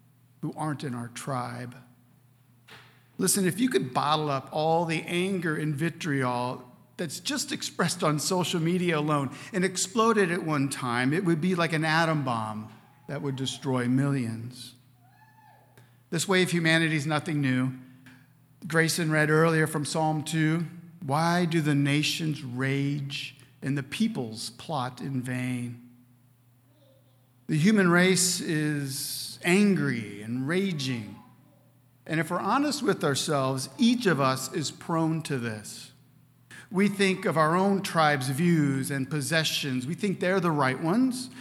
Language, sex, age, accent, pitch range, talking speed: English, male, 50-69, American, 130-175 Hz, 140 wpm